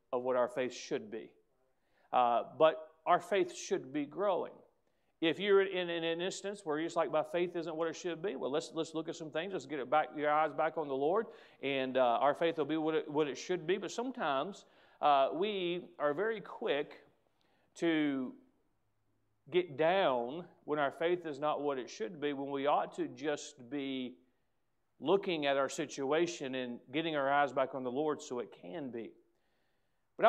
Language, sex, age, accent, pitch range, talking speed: English, male, 40-59, American, 135-175 Hz, 200 wpm